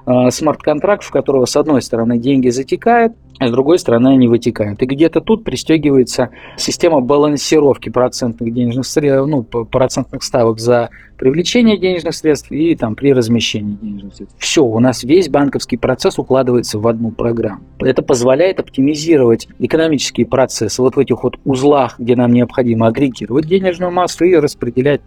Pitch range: 120-150 Hz